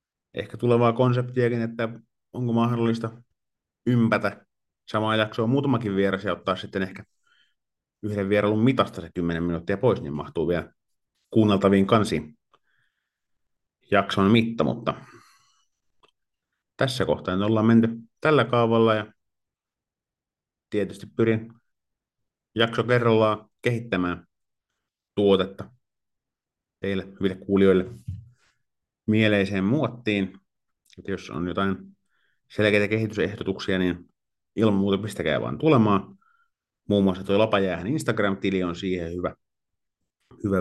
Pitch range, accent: 95-115 Hz, native